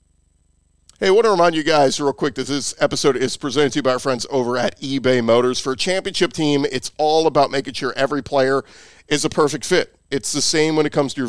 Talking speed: 245 wpm